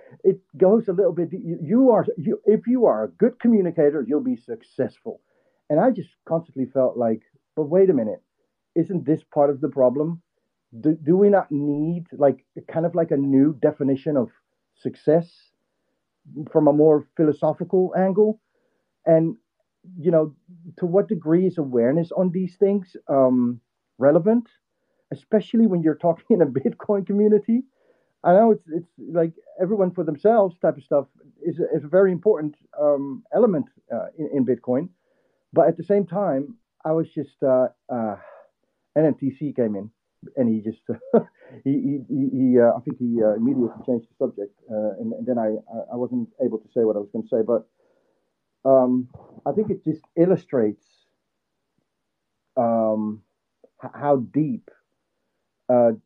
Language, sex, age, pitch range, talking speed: English, male, 50-69, 130-185 Hz, 160 wpm